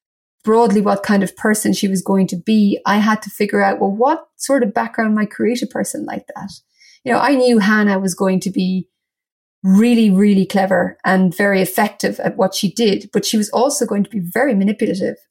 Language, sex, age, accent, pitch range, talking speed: English, female, 30-49, Irish, 195-230 Hz, 210 wpm